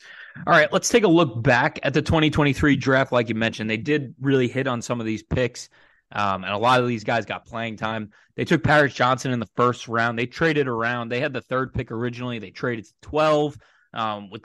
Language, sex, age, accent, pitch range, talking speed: English, male, 20-39, American, 110-135 Hz, 235 wpm